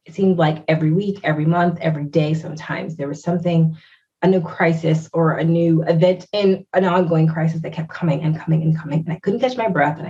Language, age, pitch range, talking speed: English, 30-49, 160-185 Hz, 225 wpm